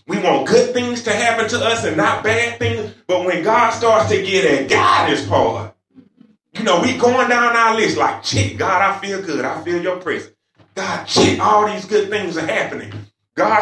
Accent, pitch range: American, 125-190 Hz